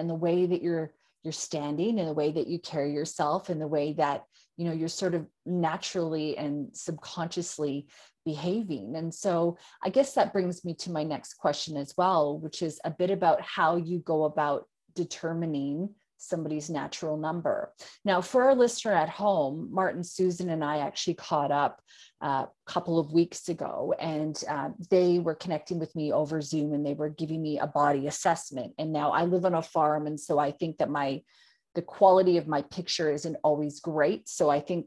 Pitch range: 155-195 Hz